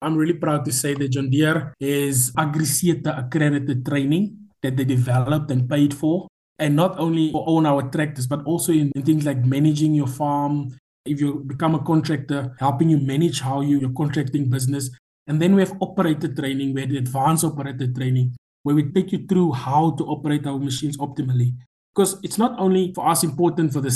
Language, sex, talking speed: English, male, 195 wpm